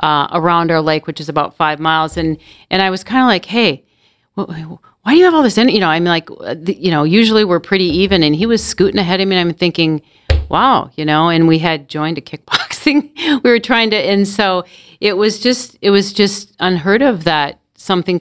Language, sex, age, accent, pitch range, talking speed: English, female, 40-59, American, 145-180 Hz, 245 wpm